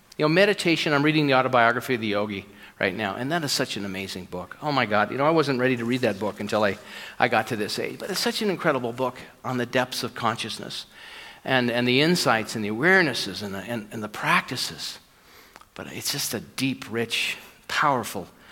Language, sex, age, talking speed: English, male, 50-69, 215 wpm